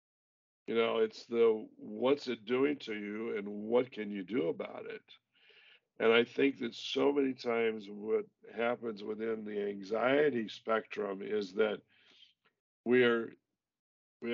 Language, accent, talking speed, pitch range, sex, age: English, American, 140 wpm, 105-130 Hz, male, 50-69